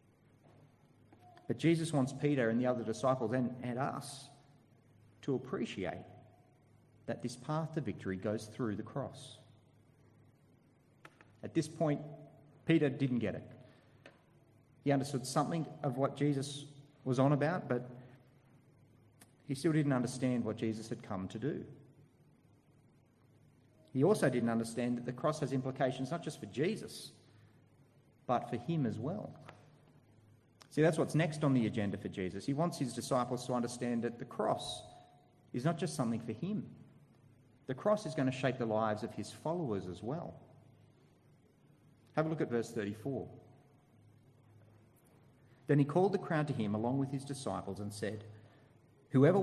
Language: English